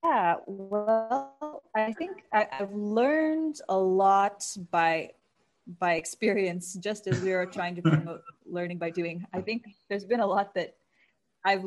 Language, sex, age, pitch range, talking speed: English, female, 20-39, 175-215 Hz, 155 wpm